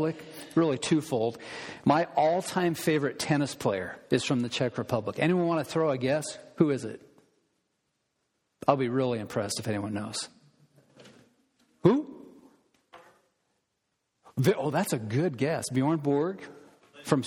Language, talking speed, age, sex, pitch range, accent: English, 130 wpm, 40-59, male, 135-175 Hz, American